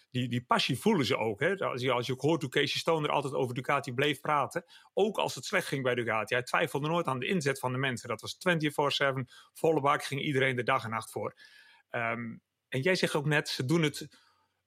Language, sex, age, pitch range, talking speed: English, male, 40-59, 125-165 Hz, 230 wpm